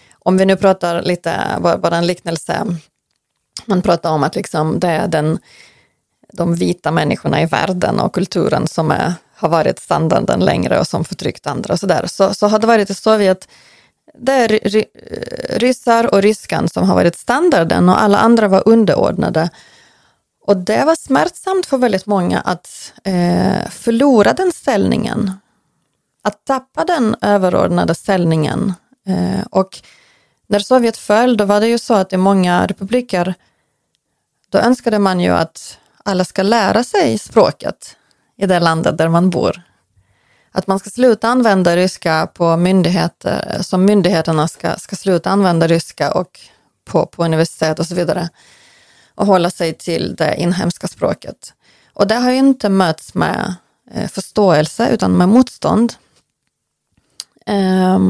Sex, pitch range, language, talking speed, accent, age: female, 175-225 Hz, Swedish, 150 wpm, native, 30-49